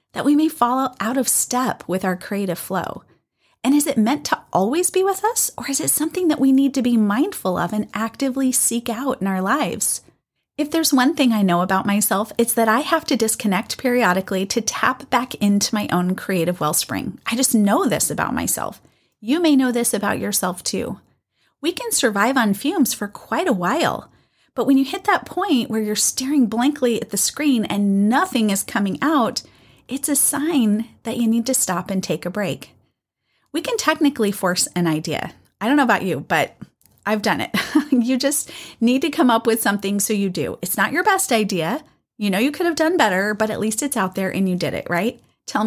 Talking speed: 215 wpm